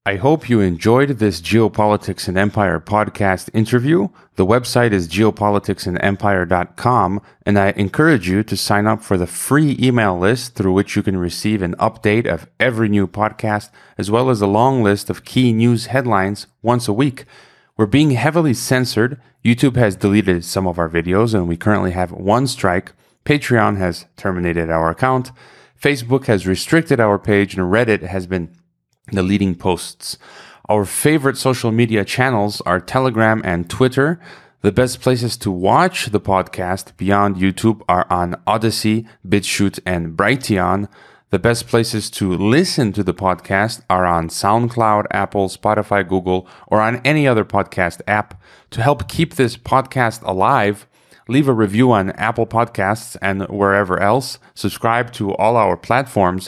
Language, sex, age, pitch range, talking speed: English, male, 30-49, 95-120 Hz, 155 wpm